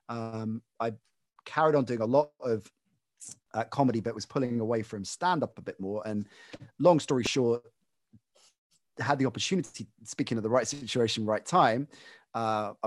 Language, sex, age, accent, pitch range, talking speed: English, male, 30-49, British, 110-145 Hz, 160 wpm